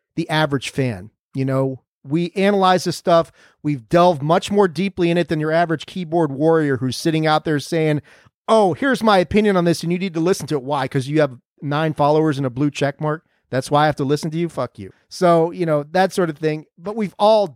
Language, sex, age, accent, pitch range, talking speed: English, male, 40-59, American, 135-170 Hz, 240 wpm